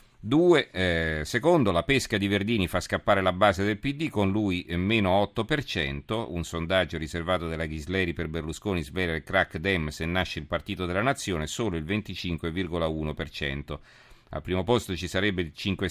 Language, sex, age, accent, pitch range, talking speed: Italian, male, 40-59, native, 85-105 Hz, 165 wpm